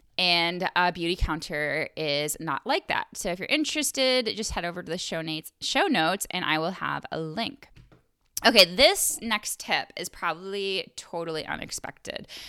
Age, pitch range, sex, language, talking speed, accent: 10-29, 160-215 Hz, female, English, 170 wpm, American